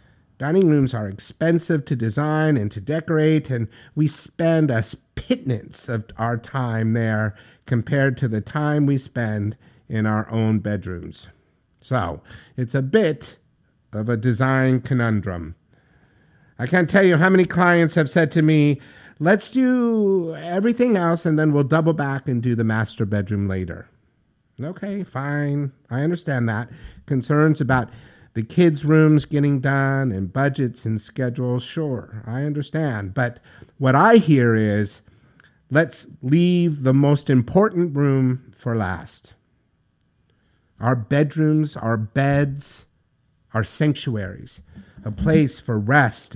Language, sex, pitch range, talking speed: English, male, 115-155 Hz, 135 wpm